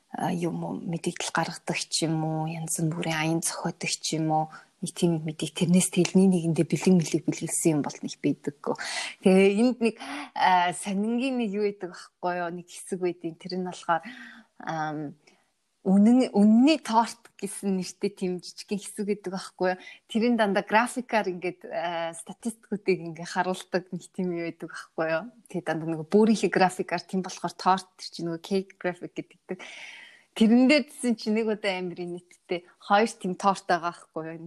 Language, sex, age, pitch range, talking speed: Russian, female, 20-39, 165-200 Hz, 125 wpm